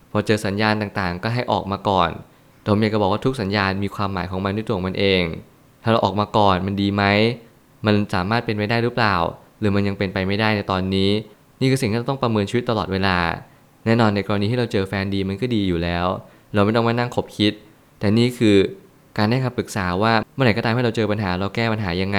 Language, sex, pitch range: Thai, male, 100-115 Hz